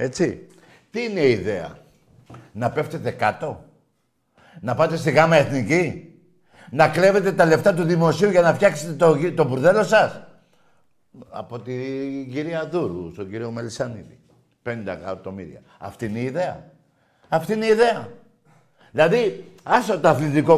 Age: 60-79